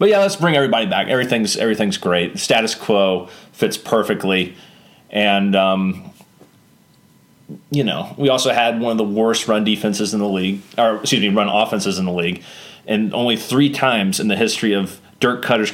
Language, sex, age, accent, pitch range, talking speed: English, male, 30-49, American, 100-140 Hz, 185 wpm